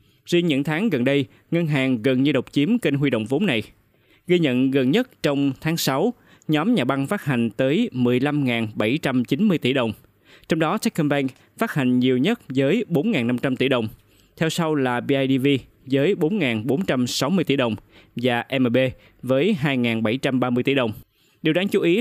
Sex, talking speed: male, 165 wpm